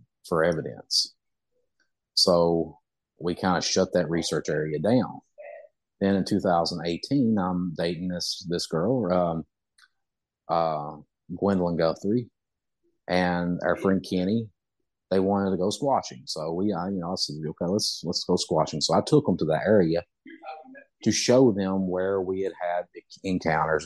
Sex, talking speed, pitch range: male, 140 wpm, 85-110 Hz